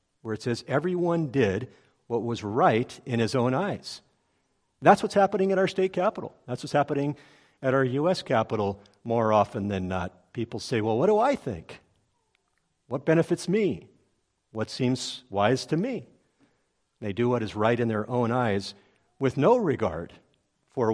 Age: 50-69